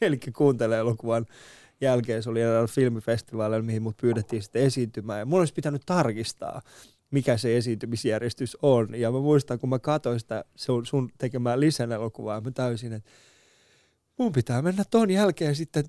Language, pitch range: Finnish, 115-150 Hz